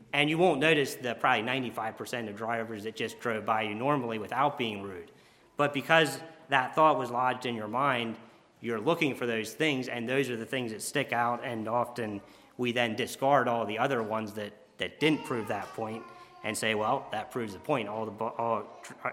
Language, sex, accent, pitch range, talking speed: English, male, American, 115-145 Hz, 205 wpm